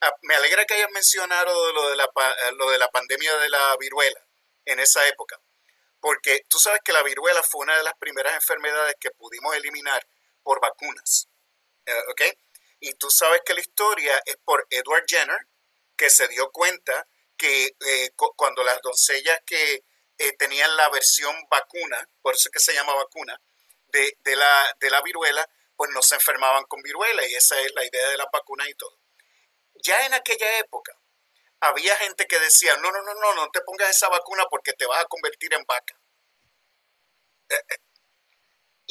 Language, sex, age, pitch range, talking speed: Spanish, male, 40-59, 145-215 Hz, 180 wpm